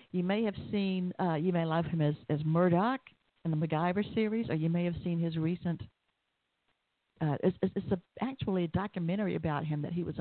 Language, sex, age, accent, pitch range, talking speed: English, female, 50-69, American, 155-185 Hz, 200 wpm